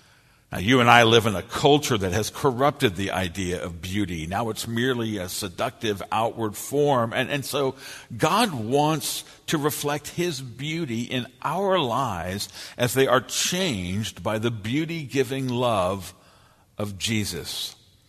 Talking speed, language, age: 145 wpm, English, 60-79